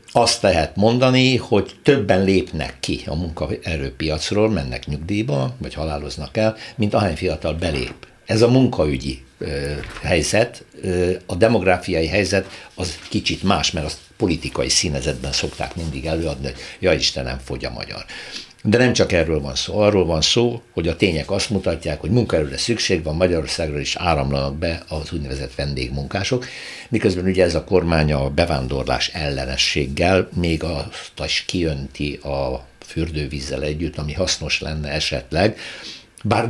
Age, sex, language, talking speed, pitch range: 60-79, male, Hungarian, 140 wpm, 70-100 Hz